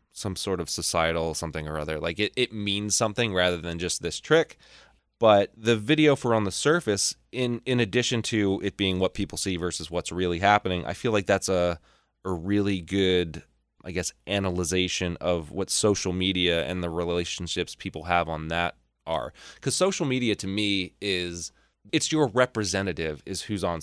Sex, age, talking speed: male, 20-39, 180 wpm